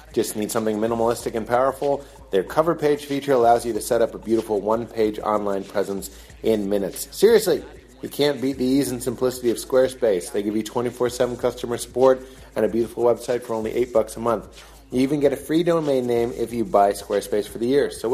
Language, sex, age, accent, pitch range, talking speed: English, male, 30-49, American, 105-130 Hz, 220 wpm